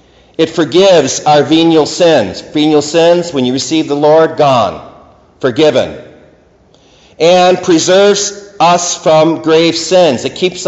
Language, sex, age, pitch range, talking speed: English, male, 50-69, 145-175 Hz, 125 wpm